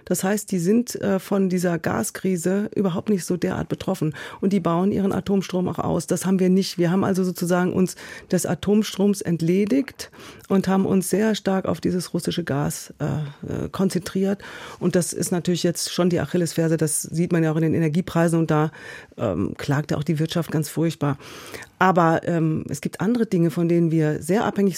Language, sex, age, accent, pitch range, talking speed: German, female, 40-59, German, 165-195 Hz, 185 wpm